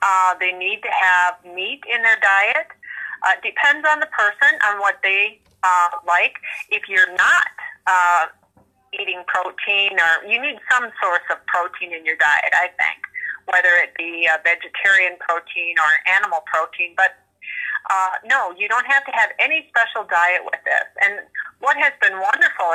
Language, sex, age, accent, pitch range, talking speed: English, female, 30-49, American, 175-230 Hz, 170 wpm